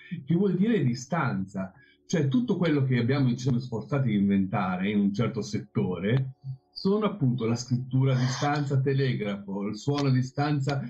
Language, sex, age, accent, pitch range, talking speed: Italian, male, 50-69, native, 115-160 Hz, 150 wpm